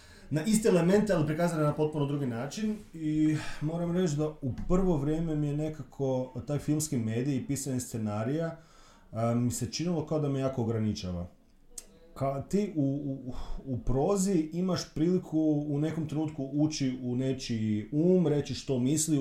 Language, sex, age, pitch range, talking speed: Croatian, male, 30-49, 115-155 Hz, 160 wpm